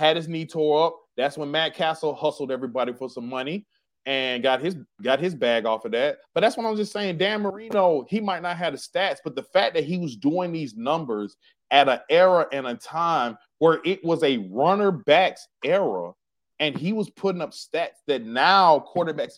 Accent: American